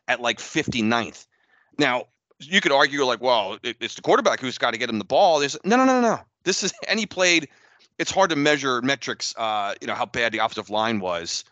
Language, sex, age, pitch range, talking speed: English, male, 30-49, 110-145 Hz, 225 wpm